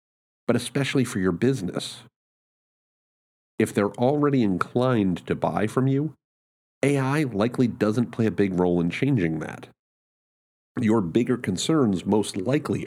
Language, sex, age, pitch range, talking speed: English, male, 50-69, 90-125 Hz, 130 wpm